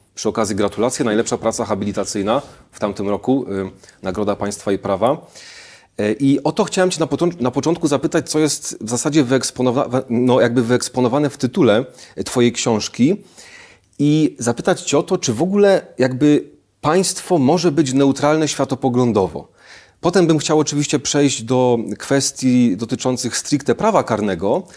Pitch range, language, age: 110-150 Hz, Polish, 30-49